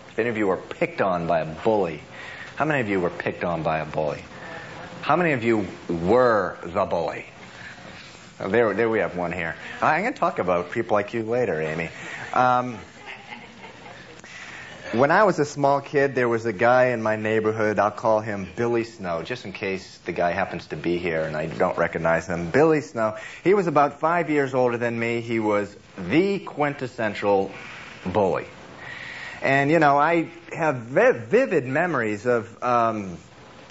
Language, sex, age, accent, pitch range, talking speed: English, male, 30-49, American, 100-140 Hz, 180 wpm